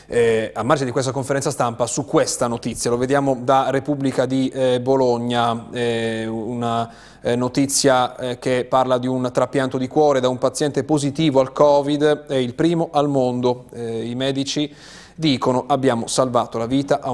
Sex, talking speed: male, 170 wpm